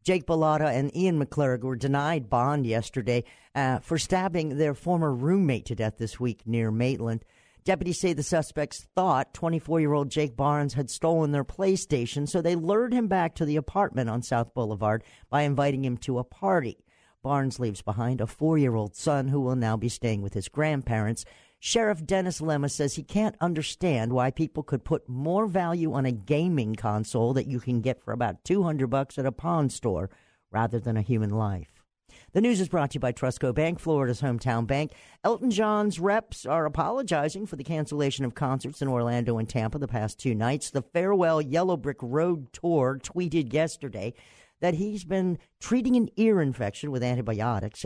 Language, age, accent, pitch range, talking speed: English, 50-69, American, 120-165 Hz, 180 wpm